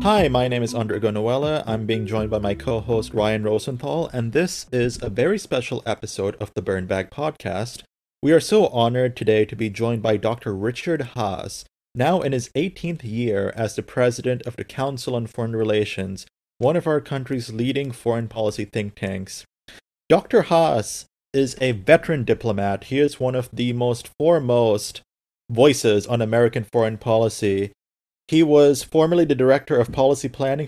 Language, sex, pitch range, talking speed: English, male, 110-140 Hz, 170 wpm